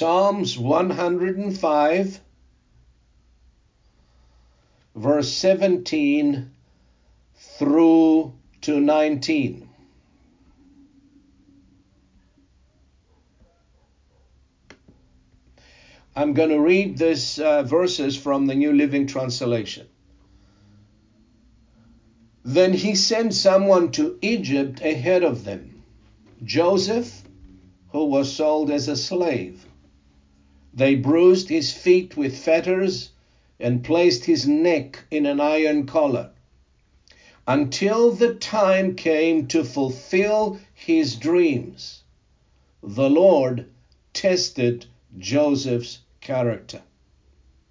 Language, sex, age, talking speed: English, male, 60-79, 75 wpm